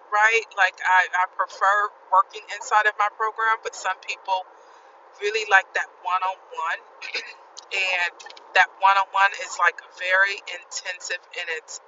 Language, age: English, 30-49